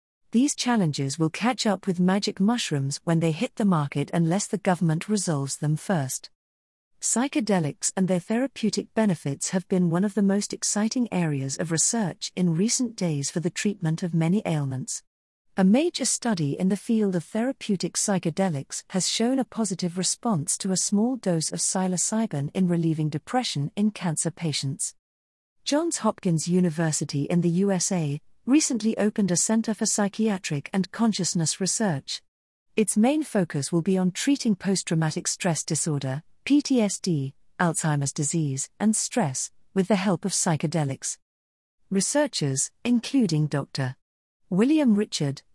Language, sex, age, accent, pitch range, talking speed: English, female, 40-59, British, 155-215 Hz, 145 wpm